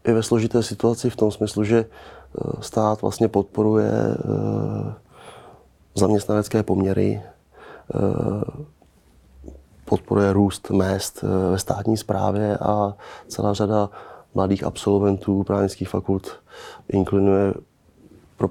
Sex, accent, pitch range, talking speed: male, native, 95-100 Hz, 90 wpm